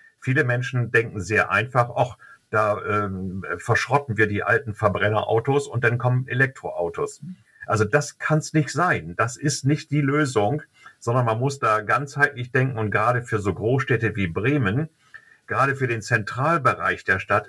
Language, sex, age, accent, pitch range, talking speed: German, male, 50-69, German, 110-140 Hz, 160 wpm